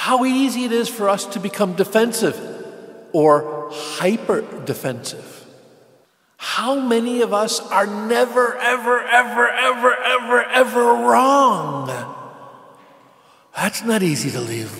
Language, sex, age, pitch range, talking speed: English, male, 50-69, 155-235 Hz, 115 wpm